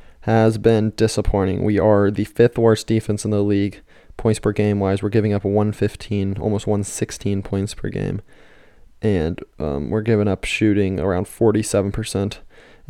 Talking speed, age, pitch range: 155 wpm, 20-39, 105-125 Hz